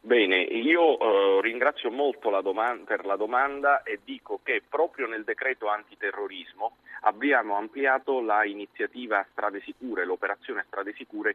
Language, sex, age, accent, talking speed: Italian, male, 40-59, native, 135 wpm